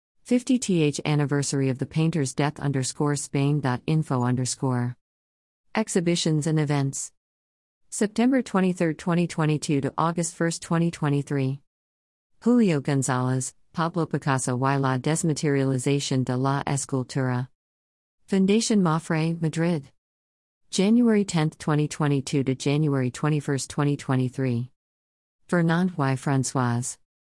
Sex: female